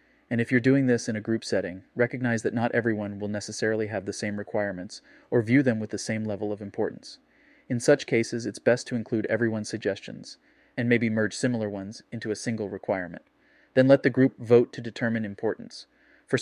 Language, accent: English, American